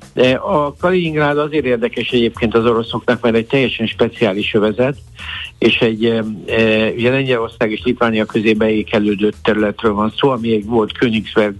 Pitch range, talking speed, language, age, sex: 110-125 Hz, 155 wpm, Hungarian, 60-79, male